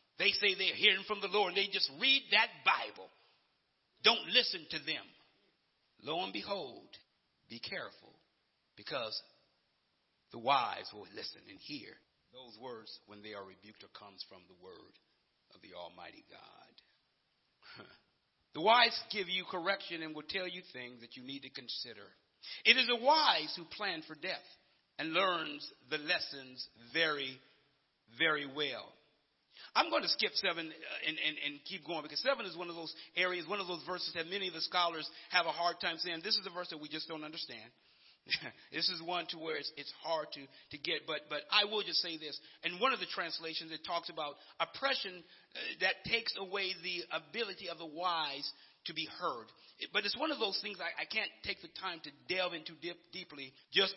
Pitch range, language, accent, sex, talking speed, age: 155-195 Hz, English, American, male, 185 wpm, 50-69